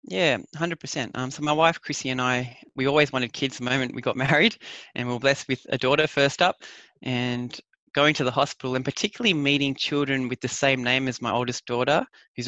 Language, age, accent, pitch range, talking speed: English, 20-39, Australian, 120-140 Hz, 215 wpm